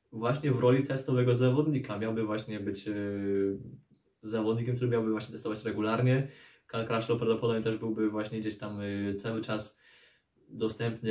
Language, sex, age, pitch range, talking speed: Polish, male, 20-39, 105-115 Hz, 140 wpm